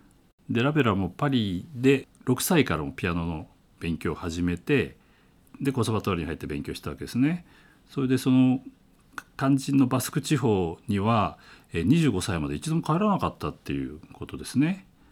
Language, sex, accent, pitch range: Japanese, male, native, 90-135 Hz